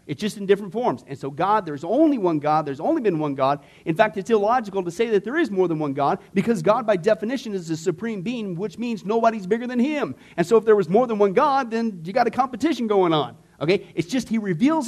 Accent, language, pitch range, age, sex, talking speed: American, English, 160-230 Hz, 40-59, male, 260 wpm